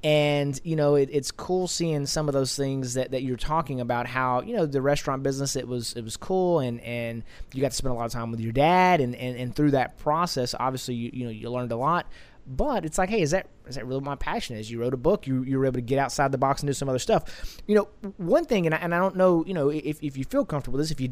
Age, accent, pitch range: 20-39, American, 125-150 Hz